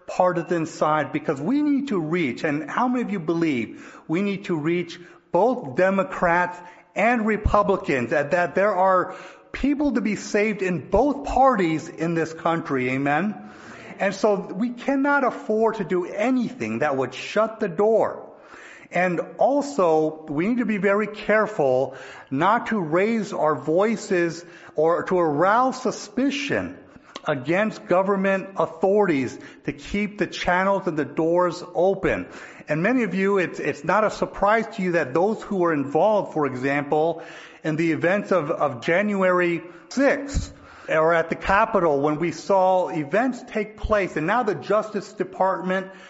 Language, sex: English, male